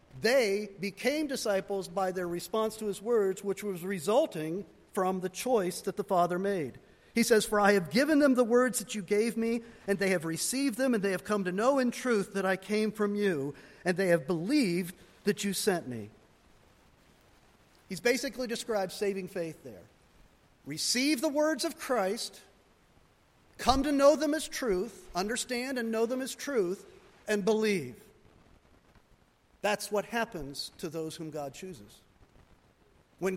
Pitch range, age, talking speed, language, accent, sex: 185-245 Hz, 50-69, 165 wpm, English, American, male